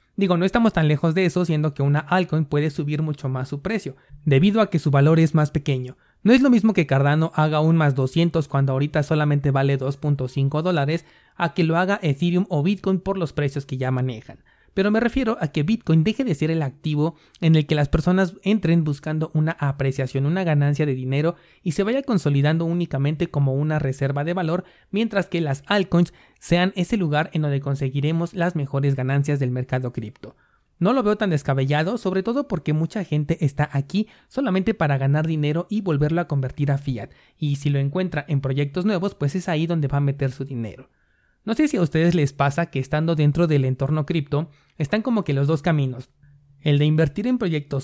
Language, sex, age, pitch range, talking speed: Spanish, male, 30-49, 140-180 Hz, 210 wpm